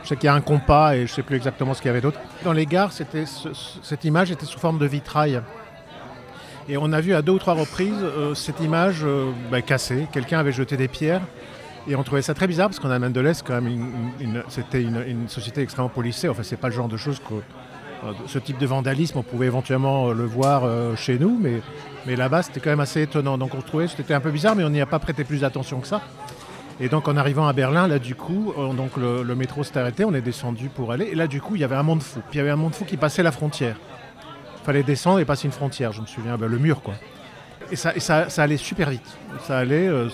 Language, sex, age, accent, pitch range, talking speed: French, male, 50-69, French, 130-155 Hz, 285 wpm